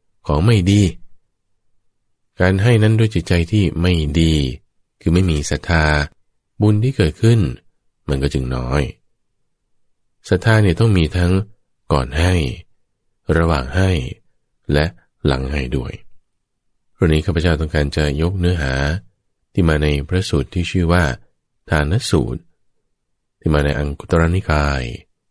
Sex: male